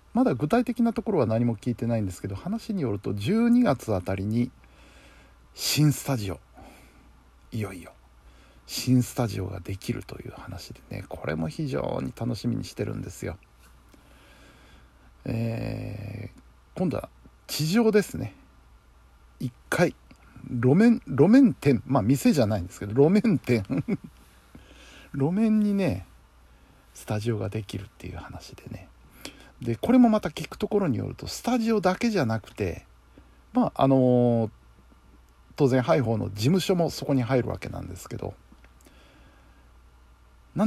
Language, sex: Japanese, male